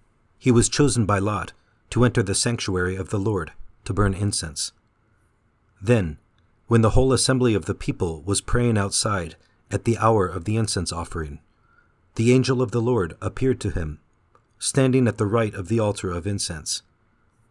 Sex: male